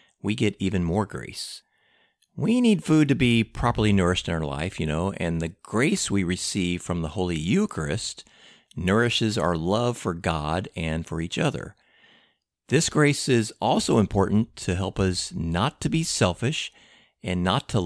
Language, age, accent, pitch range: English, 50-69, American, 90-125 Hz